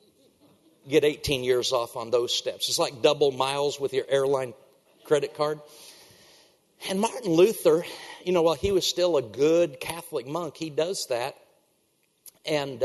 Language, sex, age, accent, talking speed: English, male, 50-69, American, 155 wpm